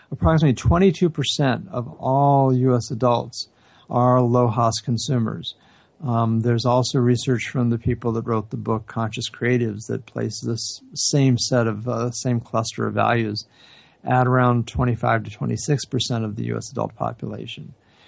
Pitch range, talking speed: 115-135 Hz, 145 wpm